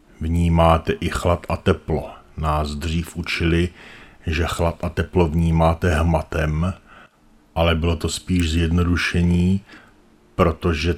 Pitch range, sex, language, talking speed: 80-85 Hz, male, Czech, 110 wpm